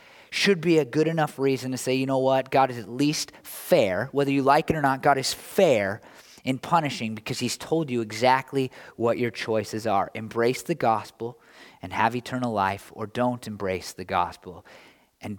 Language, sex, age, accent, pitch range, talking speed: English, male, 20-39, American, 110-135 Hz, 190 wpm